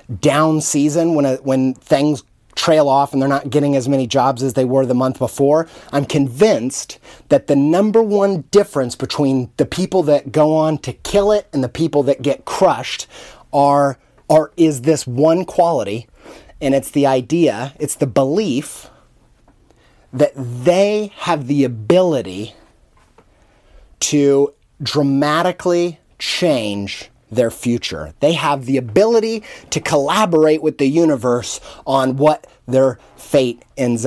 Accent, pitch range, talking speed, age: American, 130-155 Hz, 140 wpm, 30-49